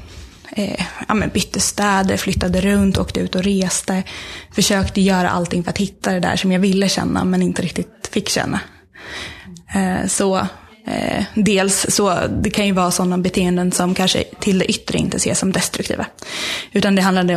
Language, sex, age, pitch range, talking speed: Swedish, female, 20-39, 180-200 Hz, 170 wpm